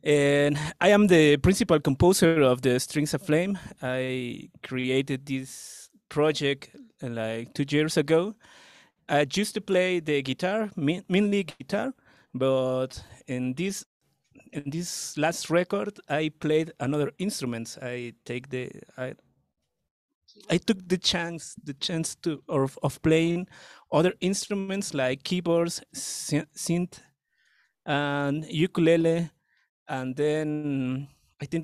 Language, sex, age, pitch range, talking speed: English, male, 30-49, 140-185 Hz, 120 wpm